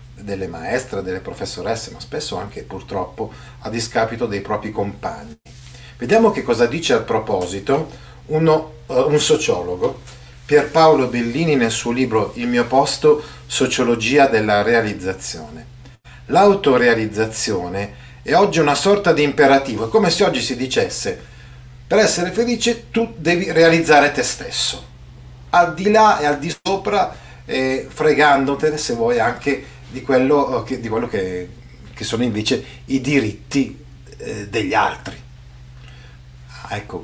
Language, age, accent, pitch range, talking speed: Italian, 40-59, native, 105-140 Hz, 135 wpm